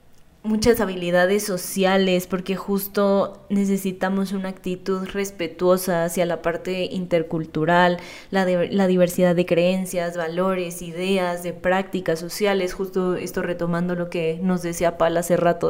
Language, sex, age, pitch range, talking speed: Spanish, female, 20-39, 170-190 Hz, 130 wpm